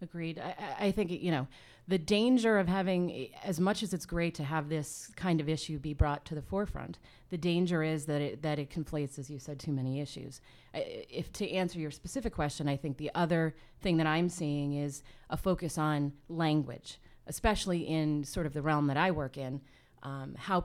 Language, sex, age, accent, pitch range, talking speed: English, female, 30-49, American, 150-185 Hz, 215 wpm